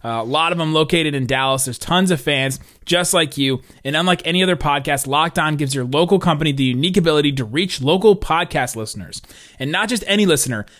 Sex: male